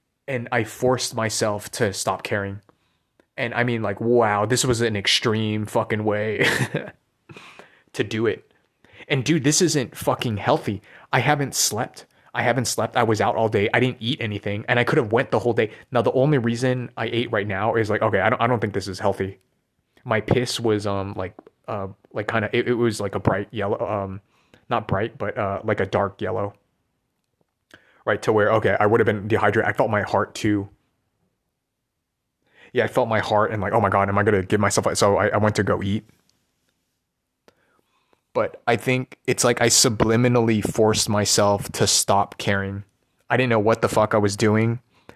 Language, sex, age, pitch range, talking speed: English, male, 20-39, 105-120 Hz, 200 wpm